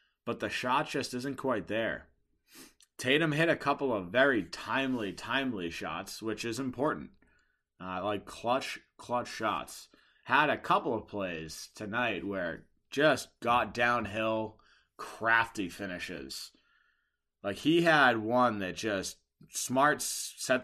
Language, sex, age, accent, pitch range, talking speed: English, male, 30-49, American, 105-130 Hz, 130 wpm